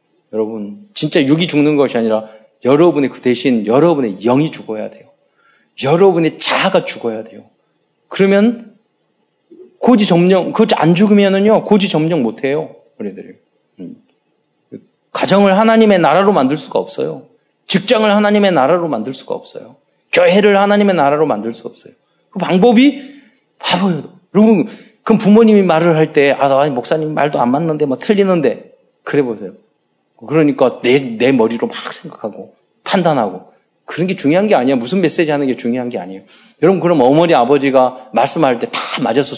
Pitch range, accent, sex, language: 140-210 Hz, native, male, Korean